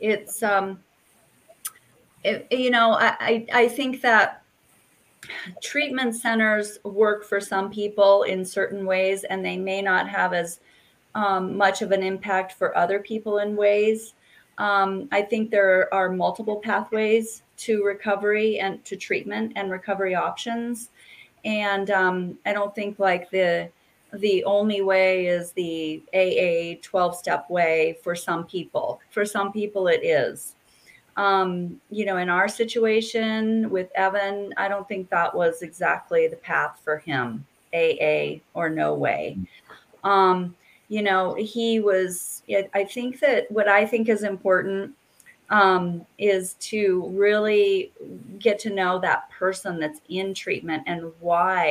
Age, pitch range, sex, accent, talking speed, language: 30-49, 185-215 Hz, female, American, 145 wpm, English